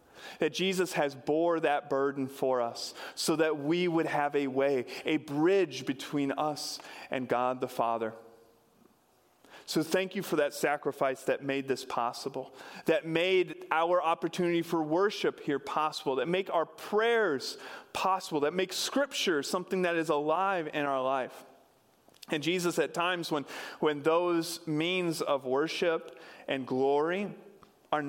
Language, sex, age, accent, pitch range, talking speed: English, male, 40-59, American, 140-175 Hz, 145 wpm